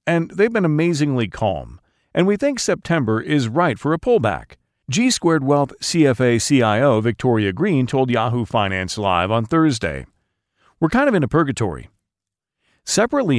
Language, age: English, 40-59